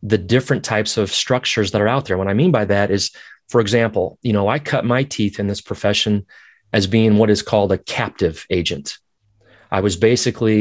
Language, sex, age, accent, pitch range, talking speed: English, male, 30-49, American, 100-115 Hz, 210 wpm